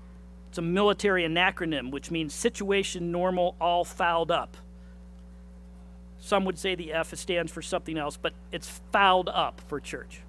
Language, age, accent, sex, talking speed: English, 50-69, American, male, 150 wpm